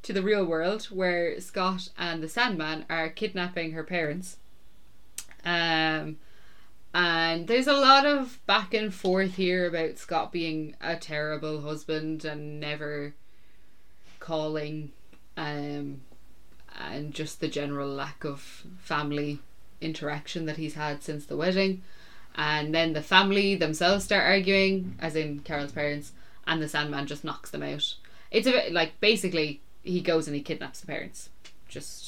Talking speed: 145 wpm